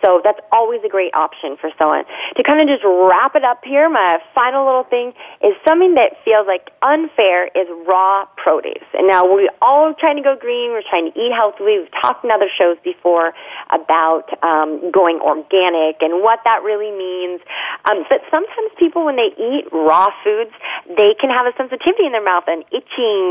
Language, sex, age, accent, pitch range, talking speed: English, female, 30-49, American, 175-275 Hz, 195 wpm